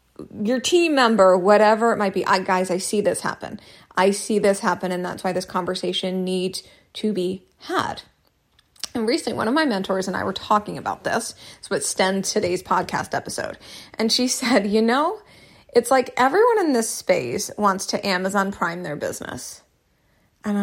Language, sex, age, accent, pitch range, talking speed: English, female, 30-49, American, 195-240 Hz, 175 wpm